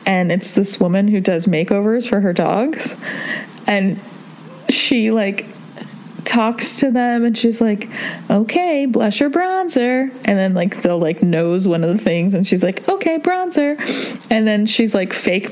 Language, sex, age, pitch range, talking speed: English, female, 20-39, 195-255 Hz, 165 wpm